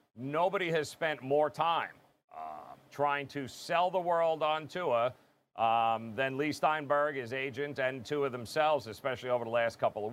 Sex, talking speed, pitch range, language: male, 165 wpm, 125-150 Hz, English